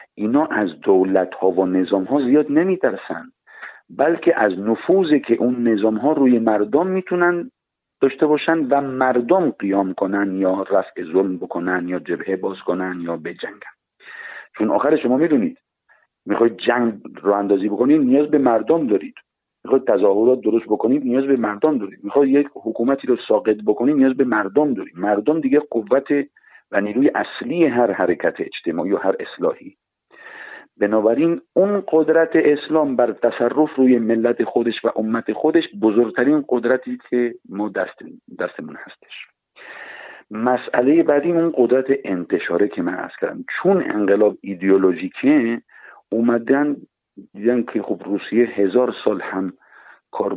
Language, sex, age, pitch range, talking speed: Persian, male, 50-69, 100-150 Hz, 140 wpm